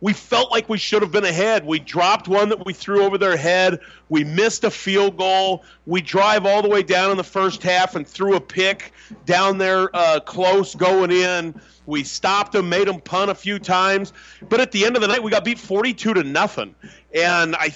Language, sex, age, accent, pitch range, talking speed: English, male, 40-59, American, 175-210 Hz, 225 wpm